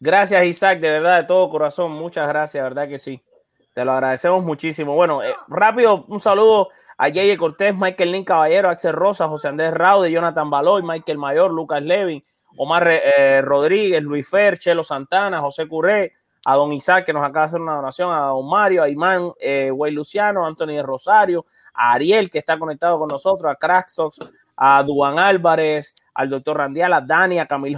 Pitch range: 150-190 Hz